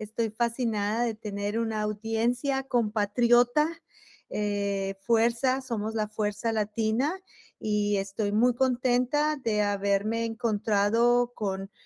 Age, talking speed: 30-49, 105 wpm